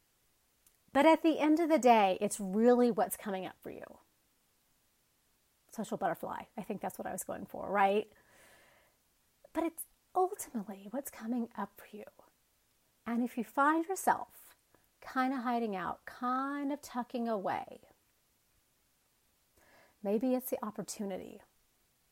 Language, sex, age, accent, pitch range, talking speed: English, female, 30-49, American, 215-285 Hz, 135 wpm